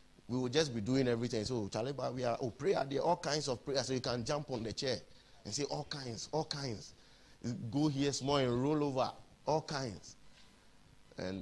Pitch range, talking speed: 115-150 Hz, 210 wpm